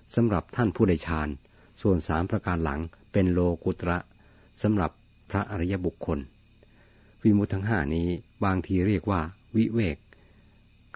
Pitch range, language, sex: 85-105 Hz, Thai, male